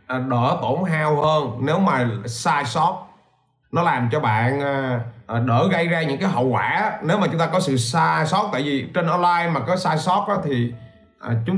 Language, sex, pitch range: Vietnamese, male, 120-180 Hz